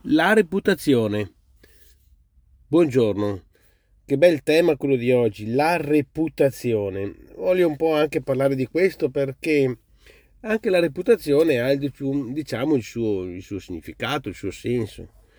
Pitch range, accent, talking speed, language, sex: 100-135 Hz, native, 135 wpm, Italian, male